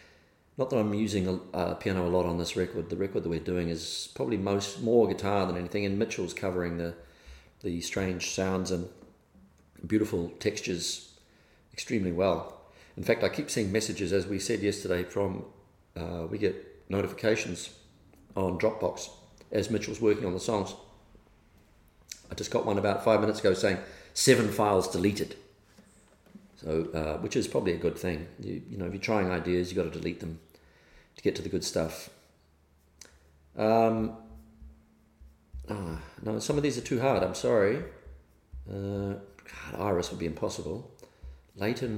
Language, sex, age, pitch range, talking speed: English, male, 40-59, 80-105 Hz, 165 wpm